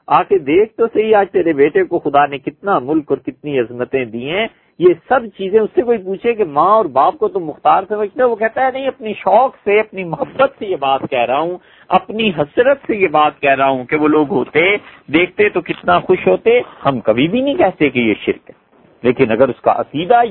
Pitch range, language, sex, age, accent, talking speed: 155-255 Hz, English, male, 50-69, Indian, 215 wpm